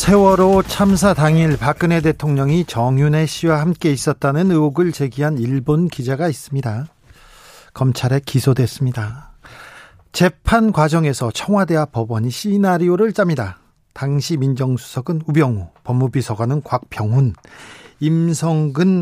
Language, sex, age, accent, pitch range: Korean, male, 40-59, native, 140-195 Hz